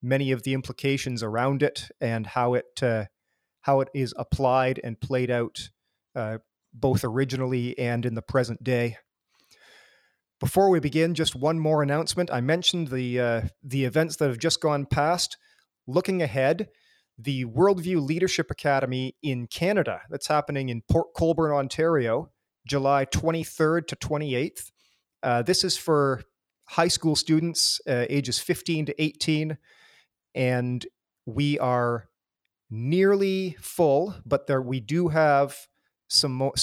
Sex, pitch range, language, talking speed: male, 125-150 Hz, English, 140 wpm